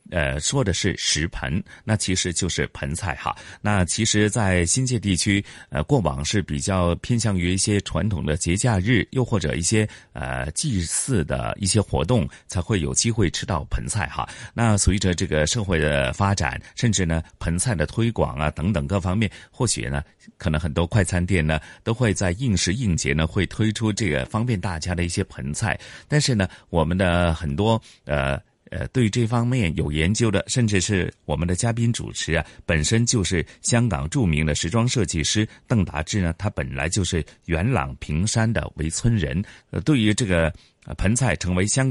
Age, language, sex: 30-49, Chinese, male